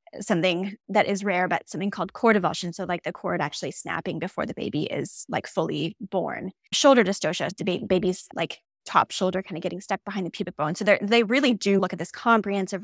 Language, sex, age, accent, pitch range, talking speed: English, female, 10-29, American, 190-220 Hz, 205 wpm